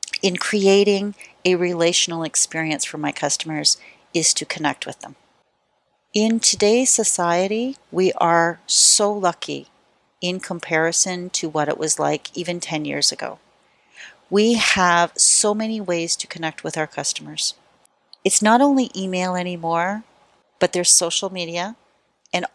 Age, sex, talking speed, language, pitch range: 40-59, female, 135 wpm, English, 165-210 Hz